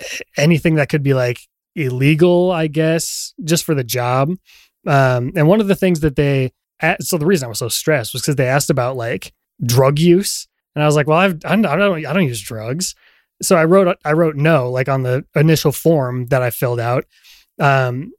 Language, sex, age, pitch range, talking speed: English, male, 20-39, 135-165 Hz, 215 wpm